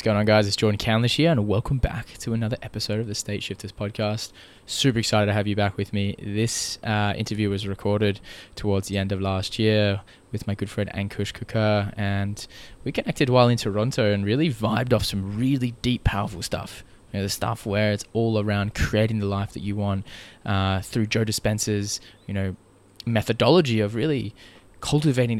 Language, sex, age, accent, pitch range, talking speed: English, male, 20-39, Australian, 100-115 Hz, 195 wpm